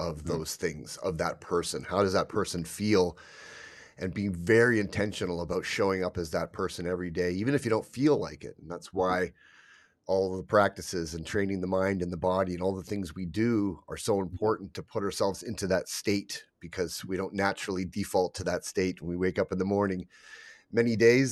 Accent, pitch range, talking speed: American, 90-105 Hz, 215 wpm